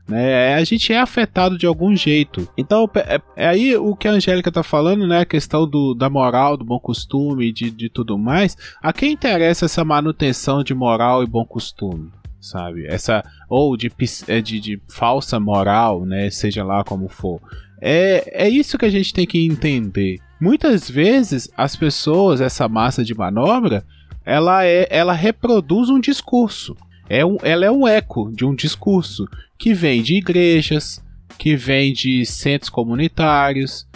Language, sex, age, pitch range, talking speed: Portuguese, male, 20-39, 120-190 Hz, 165 wpm